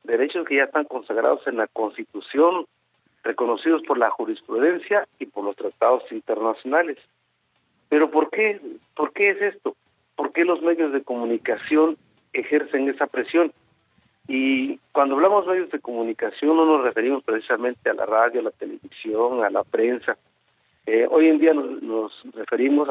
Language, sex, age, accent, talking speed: Spanish, male, 50-69, Mexican, 150 wpm